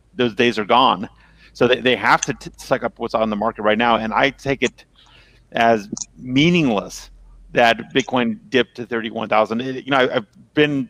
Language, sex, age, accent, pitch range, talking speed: English, male, 40-59, American, 115-140 Hz, 195 wpm